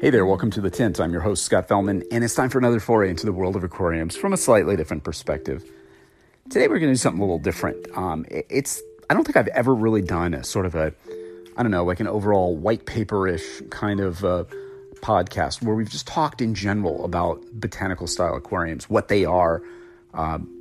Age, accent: 40-59, American